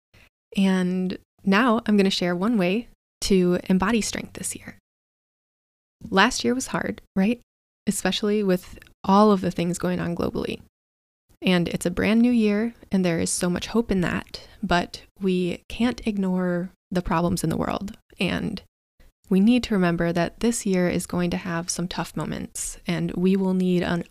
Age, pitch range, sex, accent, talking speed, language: 20-39, 175-200 Hz, female, American, 175 wpm, English